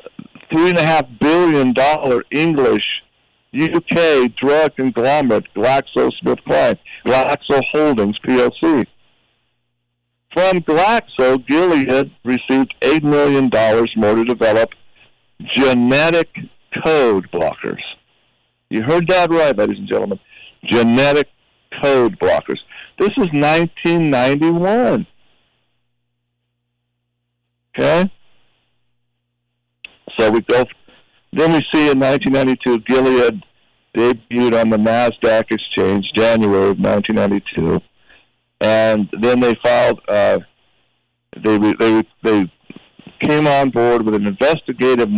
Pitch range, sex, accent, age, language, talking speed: 115-150 Hz, male, American, 60-79, English, 90 wpm